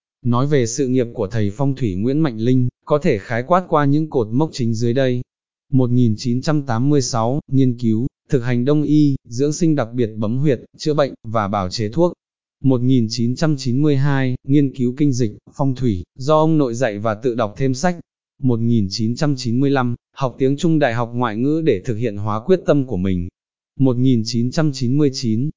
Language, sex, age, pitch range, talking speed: Vietnamese, male, 20-39, 115-145 Hz, 175 wpm